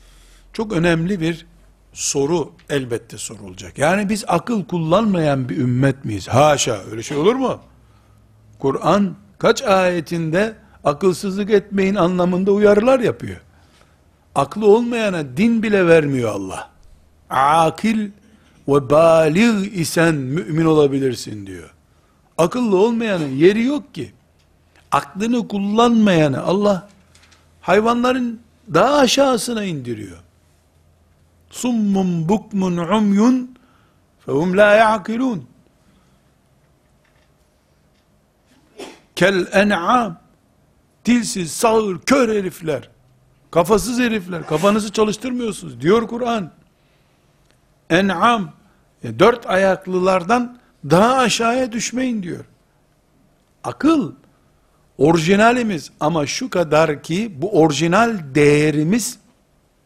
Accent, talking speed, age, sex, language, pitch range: native, 75 wpm, 60-79, male, Turkish, 140-220 Hz